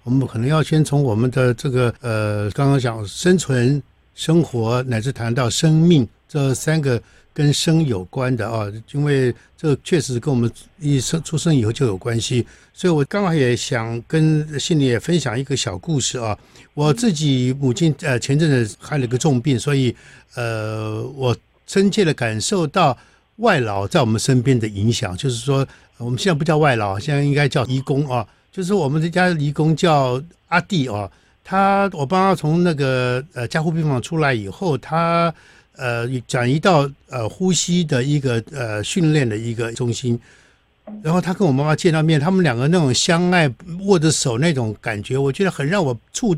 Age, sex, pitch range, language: 60-79, male, 125-170 Hz, Chinese